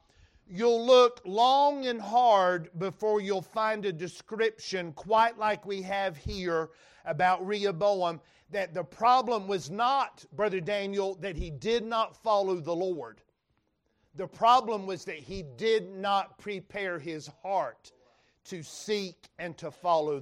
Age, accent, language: 50-69, American, English